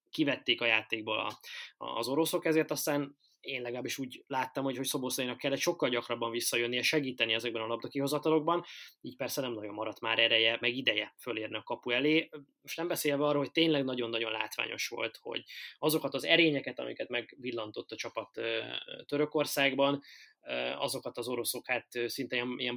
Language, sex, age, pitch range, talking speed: Hungarian, male, 20-39, 120-145 Hz, 165 wpm